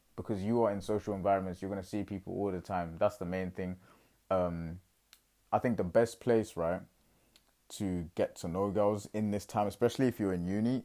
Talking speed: 210 wpm